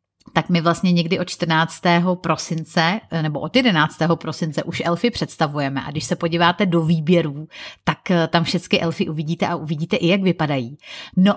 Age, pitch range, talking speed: 30-49, 165-210 Hz, 165 wpm